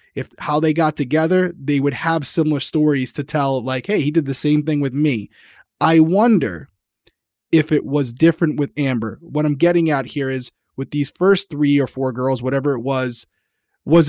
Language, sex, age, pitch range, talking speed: English, male, 20-39, 135-160 Hz, 195 wpm